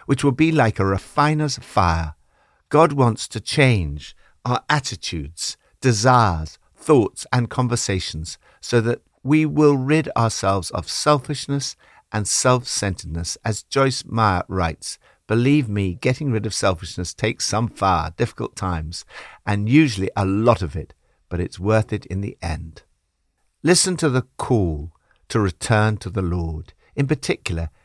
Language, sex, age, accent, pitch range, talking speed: English, male, 60-79, British, 90-130 Hz, 140 wpm